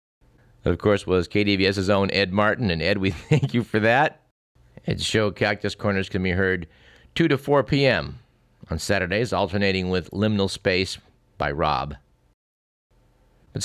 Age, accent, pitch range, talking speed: 50-69, American, 95-125 Hz, 150 wpm